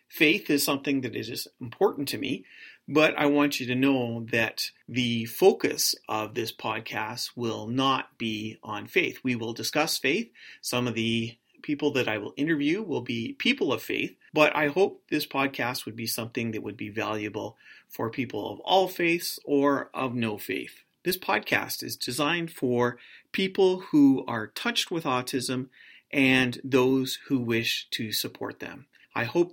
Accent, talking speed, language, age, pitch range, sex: American, 170 wpm, English, 30-49, 115-165 Hz, male